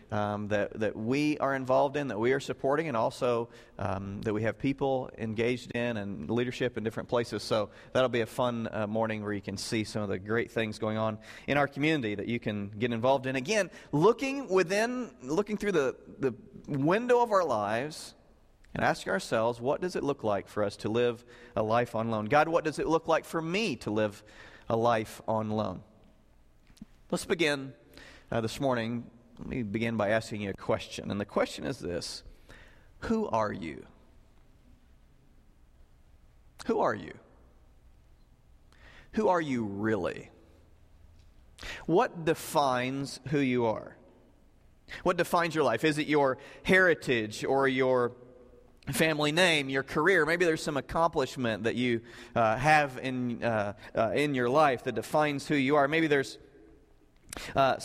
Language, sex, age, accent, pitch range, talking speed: English, male, 40-59, American, 110-145 Hz, 170 wpm